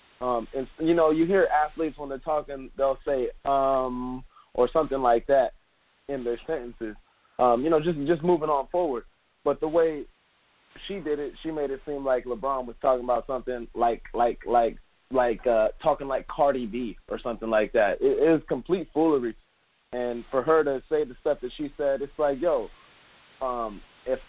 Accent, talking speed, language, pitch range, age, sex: American, 190 wpm, English, 125-155 Hz, 20-39, male